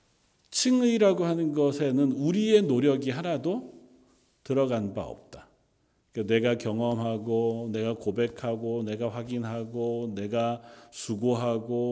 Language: Korean